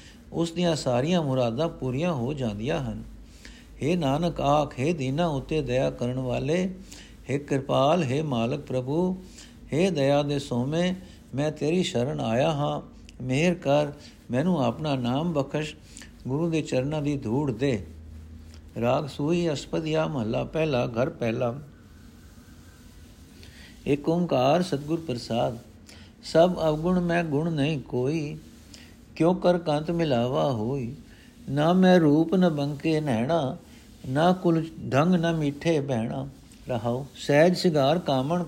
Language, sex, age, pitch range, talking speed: Punjabi, male, 60-79, 125-165 Hz, 125 wpm